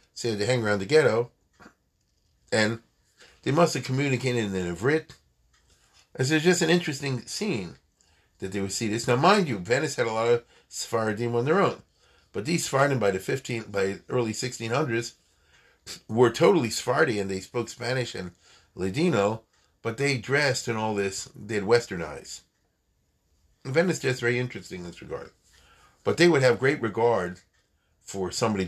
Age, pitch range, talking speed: 40-59, 95-125 Hz, 160 wpm